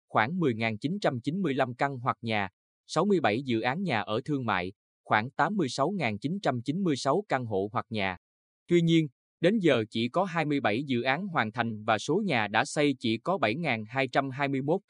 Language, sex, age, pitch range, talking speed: Vietnamese, male, 20-39, 115-150 Hz, 150 wpm